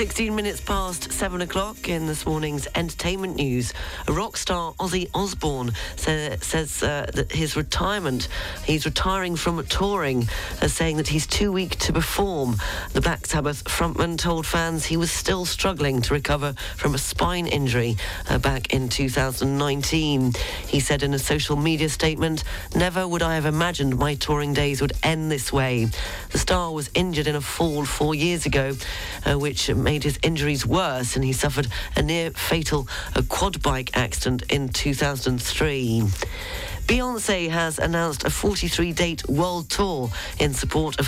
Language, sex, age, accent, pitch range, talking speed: English, female, 40-59, British, 135-170 Hz, 160 wpm